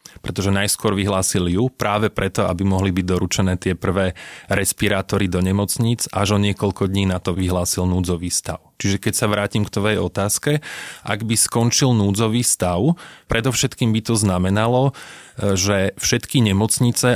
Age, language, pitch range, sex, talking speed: 30-49, Slovak, 95-110 Hz, male, 150 wpm